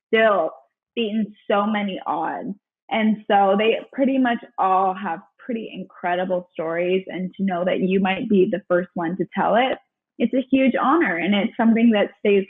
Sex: female